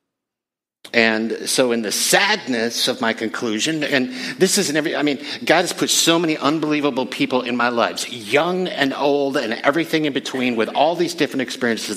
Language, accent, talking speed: English, American, 180 wpm